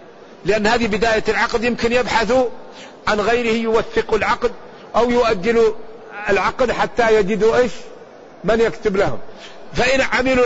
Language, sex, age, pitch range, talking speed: Arabic, male, 50-69, 200-235 Hz, 120 wpm